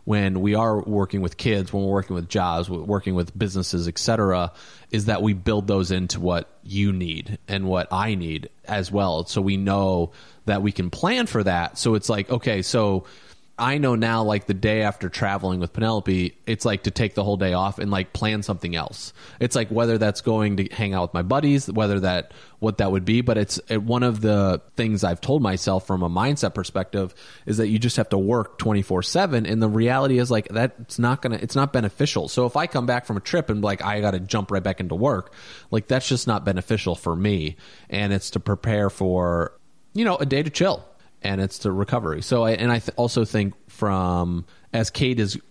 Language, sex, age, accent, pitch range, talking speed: English, male, 30-49, American, 95-115 Hz, 225 wpm